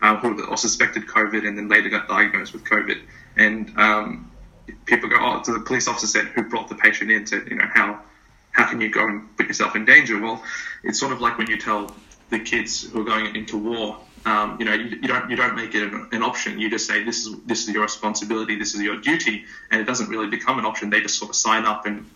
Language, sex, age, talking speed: English, male, 20-39, 255 wpm